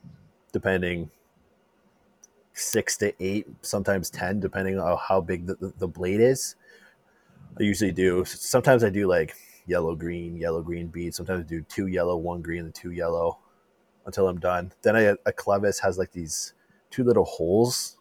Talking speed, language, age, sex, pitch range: 165 wpm, English, 20-39, male, 90-115 Hz